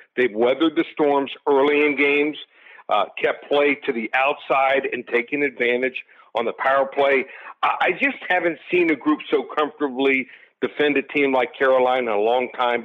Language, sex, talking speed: English, male, 175 wpm